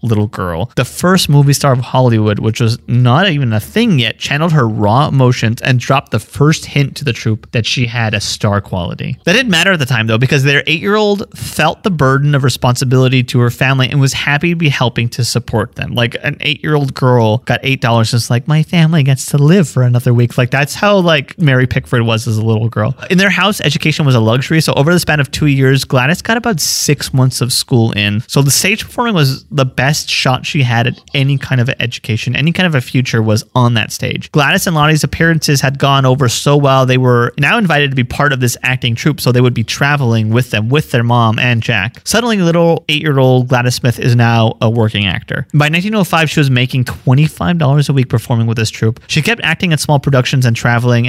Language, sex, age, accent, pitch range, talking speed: English, male, 30-49, American, 120-155 Hz, 230 wpm